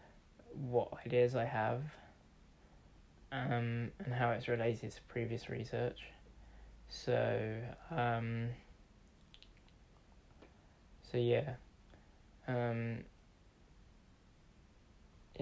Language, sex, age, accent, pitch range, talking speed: English, male, 10-29, British, 105-120 Hz, 65 wpm